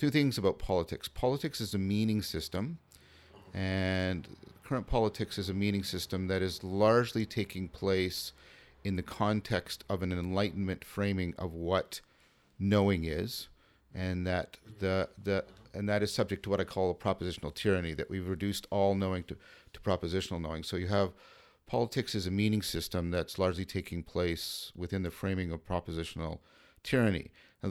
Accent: American